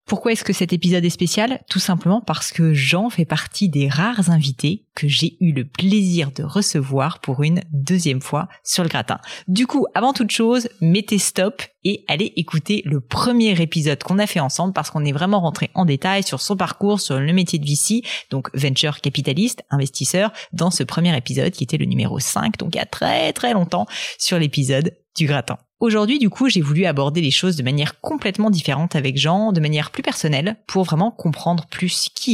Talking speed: 205 wpm